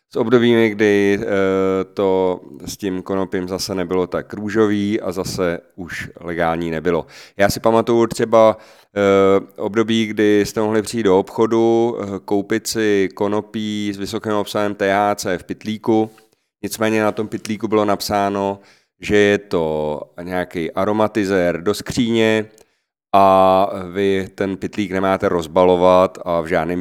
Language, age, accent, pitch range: Czech, 30-49, native, 90-110 Hz